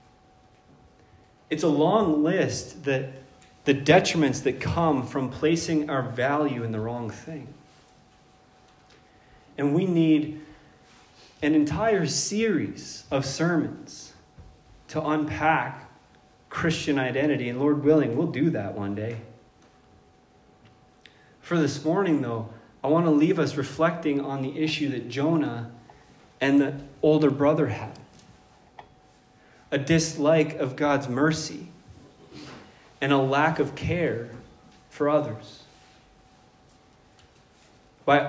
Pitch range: 130-160 Hz